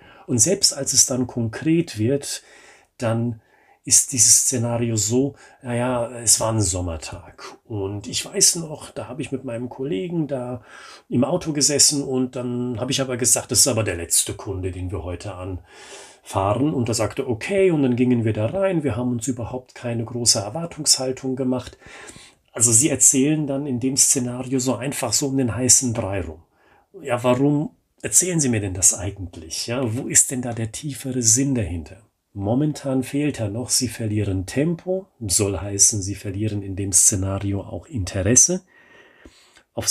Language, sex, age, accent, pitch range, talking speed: German, male, 40-59, German, 100-135 Hz, 170 wpm